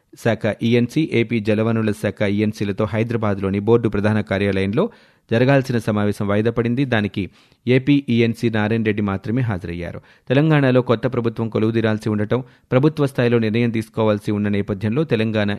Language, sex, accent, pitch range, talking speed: Telugu, male, native, 105-120 Hz, 125 wpm